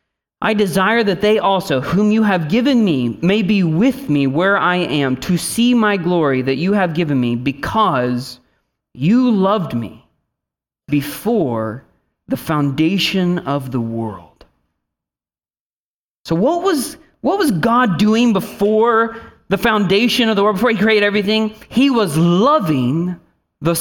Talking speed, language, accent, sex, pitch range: 145 wpm, English, American, male, 165-240 Hz